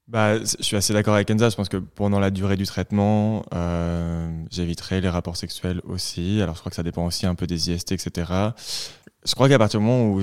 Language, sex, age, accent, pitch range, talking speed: French, male, 20-39, French, 90-105 Hz, 235 wpm